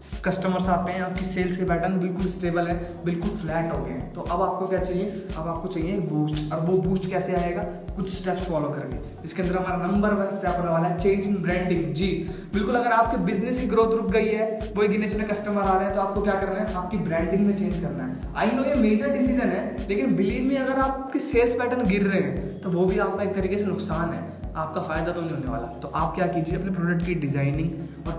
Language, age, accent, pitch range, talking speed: Hindi, 20-39, native, 170-200 Hz, 160 wpm